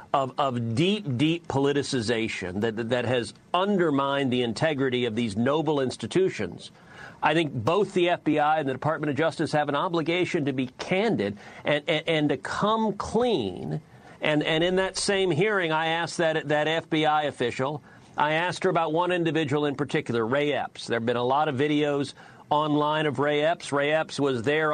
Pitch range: 145-185 Hz